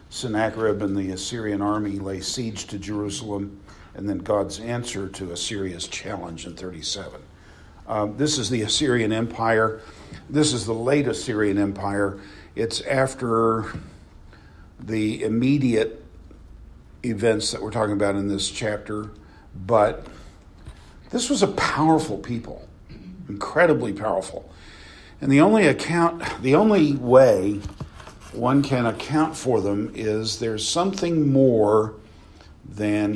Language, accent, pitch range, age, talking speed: English, American, 90-115 Hz, 50-69, 120 wpm